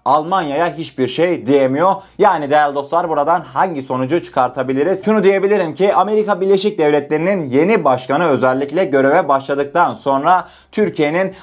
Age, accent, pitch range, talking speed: 30-49, native, 135-185 Hz, 125 wpm